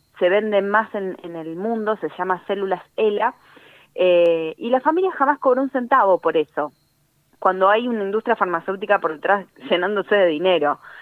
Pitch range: 185-255 Hz